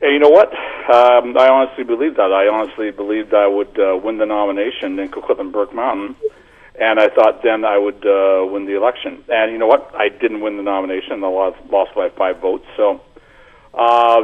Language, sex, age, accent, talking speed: English, male, 50-69, American, 205 wpm